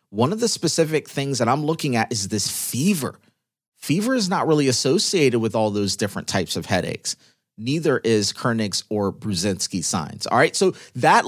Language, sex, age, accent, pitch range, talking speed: English, male, 30-49, American, 120-160 Hz, 180 wpm